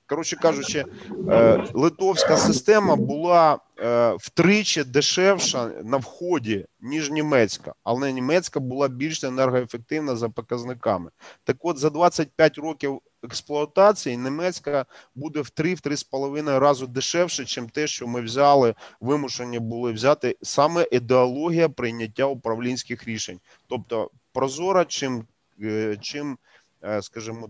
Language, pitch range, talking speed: Ukrainian, 120-155 Hz, 105 wpm